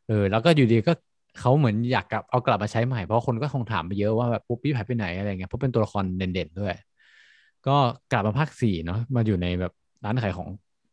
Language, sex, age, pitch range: Thai, male, 20-39, 100-125 Hz